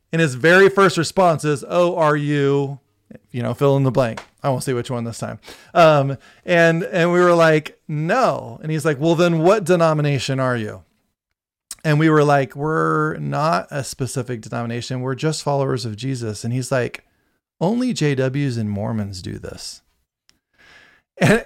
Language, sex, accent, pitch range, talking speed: English, male, American, 120-165 Hz, 175 wpm